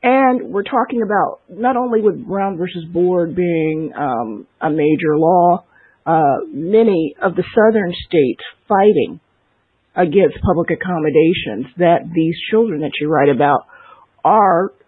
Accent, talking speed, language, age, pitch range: American, 135 wpm, English, 50-69, 170-220 Hz